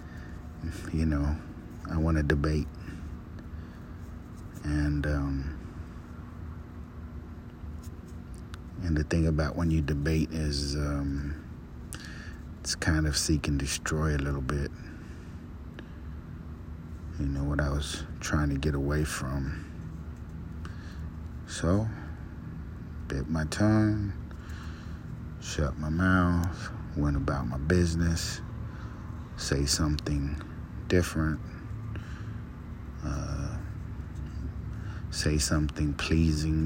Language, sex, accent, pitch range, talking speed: English, male, American, 75-80 Hz, 85 wpm